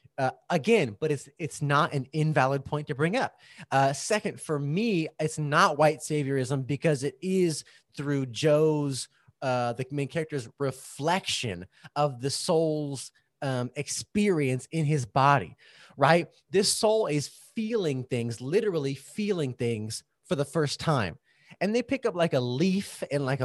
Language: English